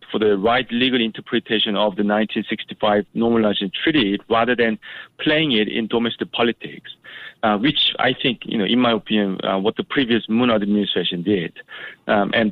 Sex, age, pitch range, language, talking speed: male, 40-59, 105-130 Hz, English, 170 wpm